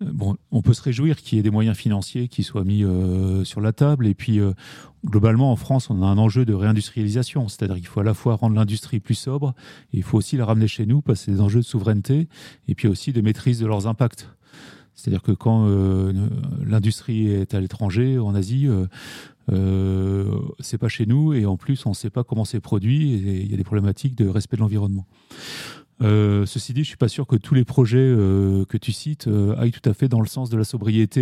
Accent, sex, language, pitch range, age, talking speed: French, male, French, 105-130 Hz, 30-49, 240 wpm